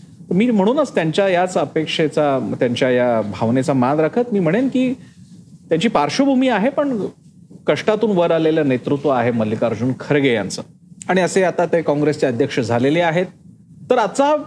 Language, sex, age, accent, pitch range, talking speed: Marathi, male, 40-59, native, 155-210 Hz, 145 wpm